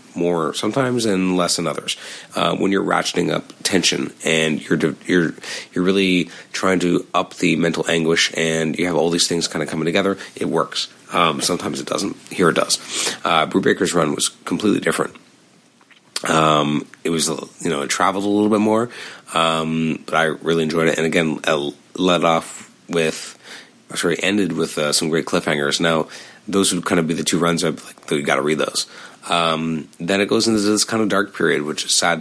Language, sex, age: English, male, 30-49